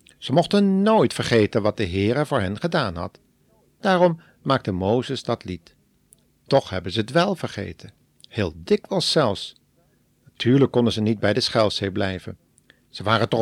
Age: 50-69